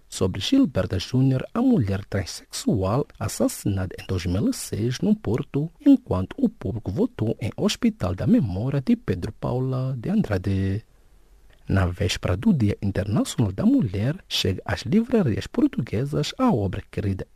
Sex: male